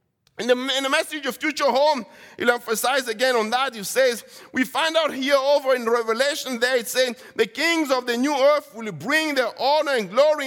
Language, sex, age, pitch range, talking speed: English, male, 50-69, 230-315 Hz, 210 wpm